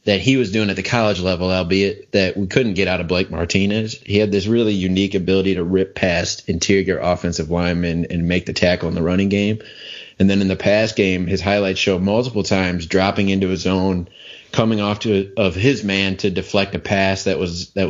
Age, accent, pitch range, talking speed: 30-49, American, 90-100 Hz, 220 wpm